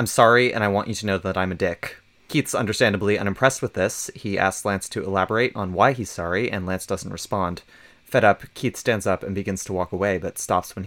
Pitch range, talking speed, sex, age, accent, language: 95-115 Hz, 240 wpm, male, 30-49, American, English